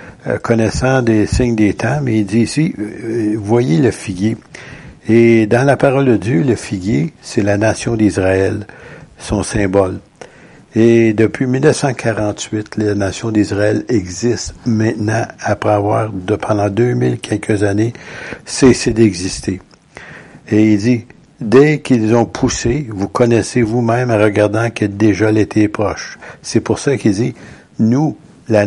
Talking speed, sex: 140 wpm, male